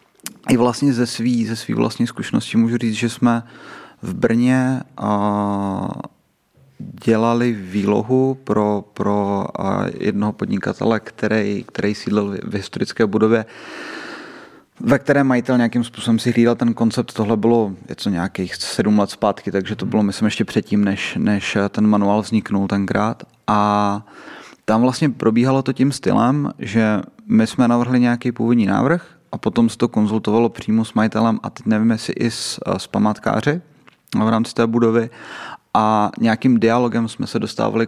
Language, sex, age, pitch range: Czech, male, 30-49, 105-125 Hz